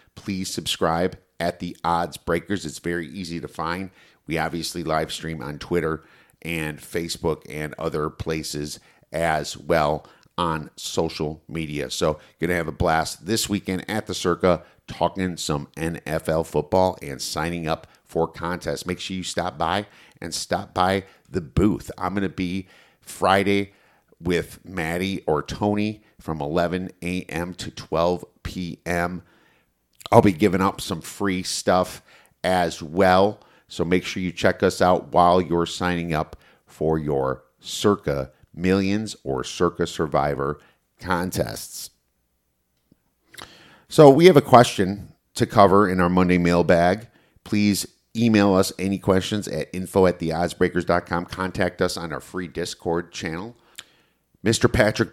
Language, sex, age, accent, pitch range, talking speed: English, male, 50-69, American, 80-100 Hz, 135 wpm